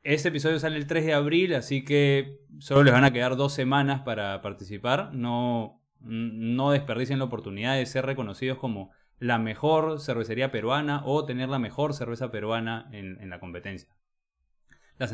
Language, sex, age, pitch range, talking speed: Spanish, male, 20-39, 110-145 Hz, 165 wpm